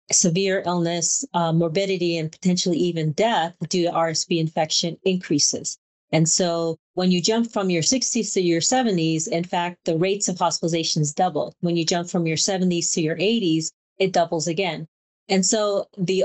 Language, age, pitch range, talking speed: English, 30-49, 165-195 Hz, 170 wpm